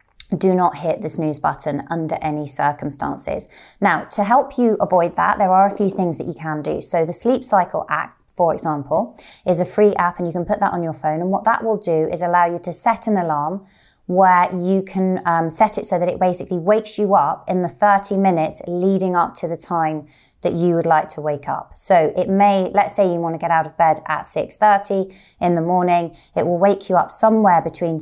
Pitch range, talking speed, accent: 160-200 Hz, 230 wpm, British